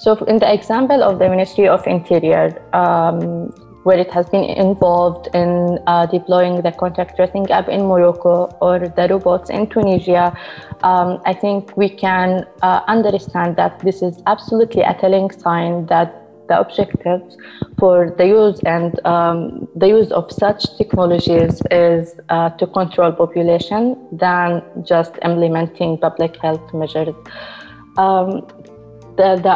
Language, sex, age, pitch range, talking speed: Arabic, female, 20-39, 170-195 Hz, 140 wpm